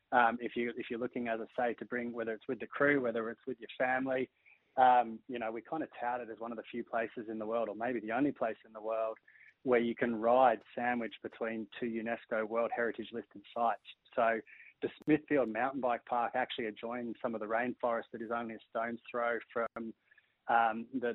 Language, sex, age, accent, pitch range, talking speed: English, male, 20-39, Australian, 115-125 Hz, 220 wpm